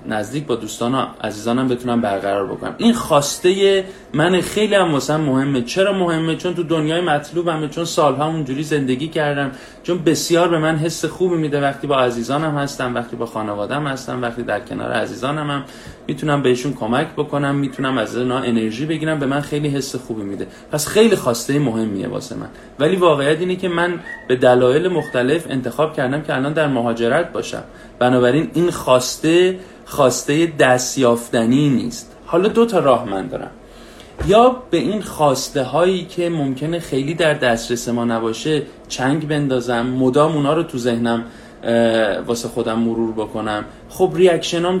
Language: Persian